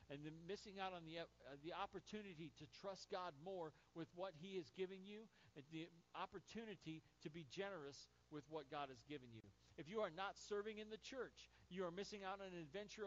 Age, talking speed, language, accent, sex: 40-59, 205 wpm, English, American, male